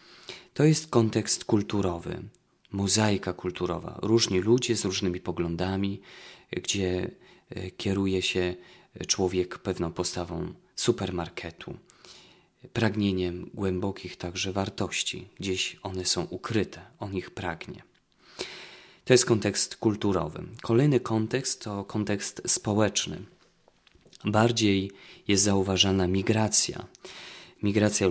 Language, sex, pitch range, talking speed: Polish, male, 95-110 Hz, 90 wpm